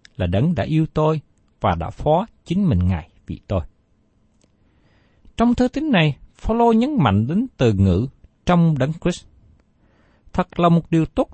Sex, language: male, Vietnamese